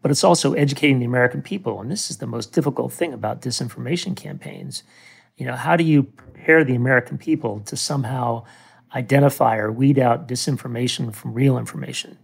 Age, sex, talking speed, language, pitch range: 40-59, male, 175 wpm, English, 115-140 Hz